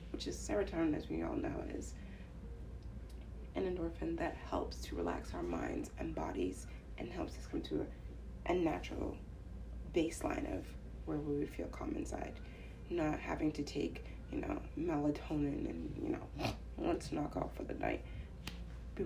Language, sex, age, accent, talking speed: English, female, 20-39, American, 155 wpm